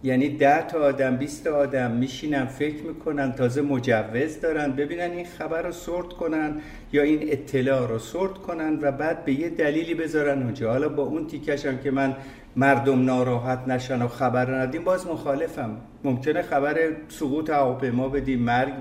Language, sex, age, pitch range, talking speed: Persian, male, 60-79, 125-150 Hz, 170 wpm